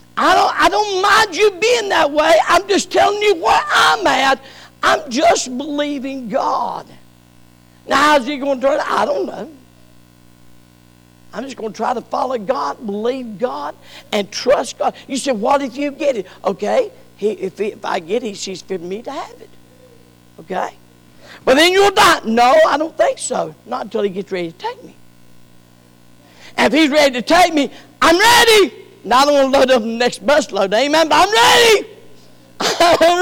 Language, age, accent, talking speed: English, 50-69, American, 195 wpm